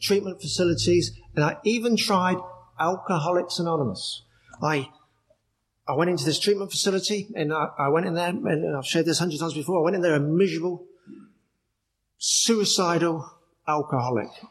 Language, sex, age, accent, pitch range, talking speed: English, male, 50-69, British, 155-195 Hz, 155 wpm